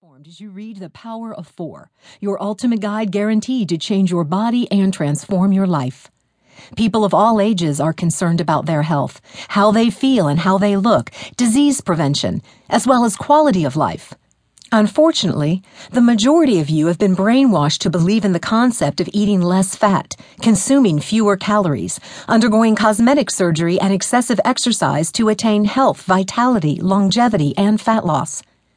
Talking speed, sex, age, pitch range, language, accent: 160 wpm, female, 50-69, 175-230 Hz, English, American